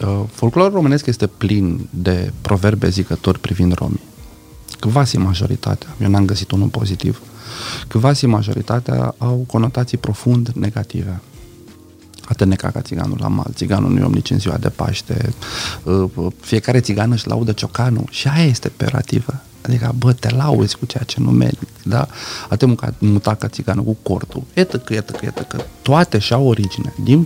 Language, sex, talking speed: Romanian, male, 155 wpm